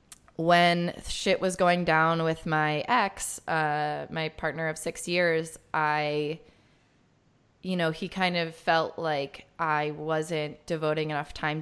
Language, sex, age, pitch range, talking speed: English, female, 20-39, 155-175 Hz, 140 wpm